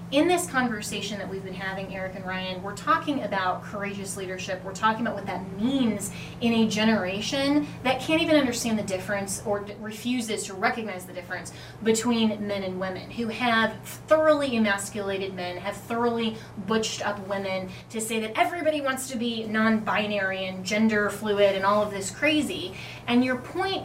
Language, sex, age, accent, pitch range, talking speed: English, female, 20-39, American, 200-245 Hz, 175 wpm